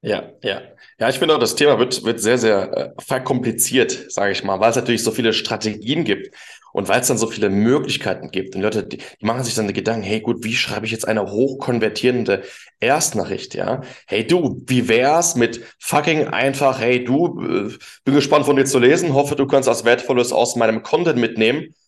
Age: 20-39